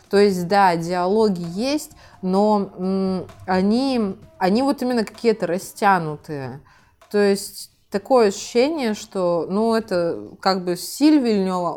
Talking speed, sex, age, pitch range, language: 110 wpm, female, 20-39, 160-195 Hz, Russian